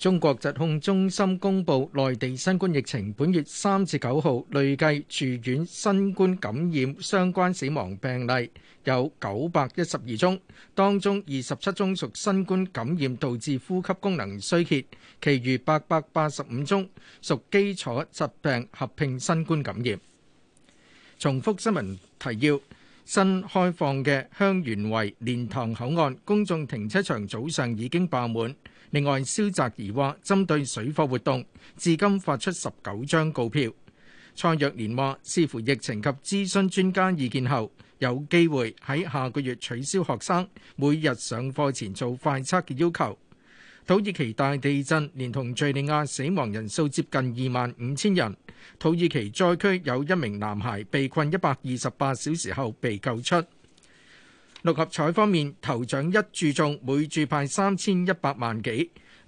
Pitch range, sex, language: 125-175 Hz, male, Chinese